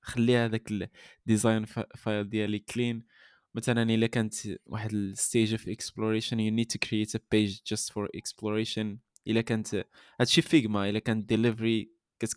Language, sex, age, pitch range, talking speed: Arabic, male, 20-39, 110-130 Hz, 110 wpm